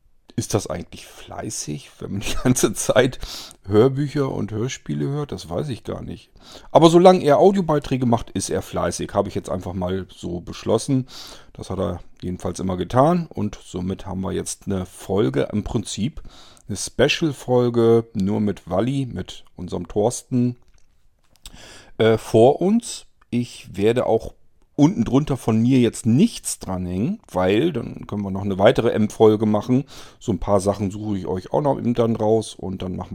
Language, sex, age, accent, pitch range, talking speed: German, male, 40-59, German, 90-115 Hz, 170 wpm